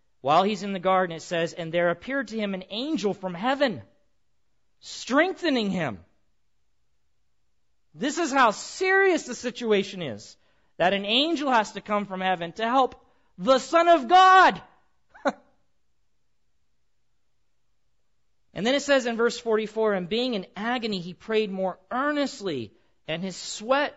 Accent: American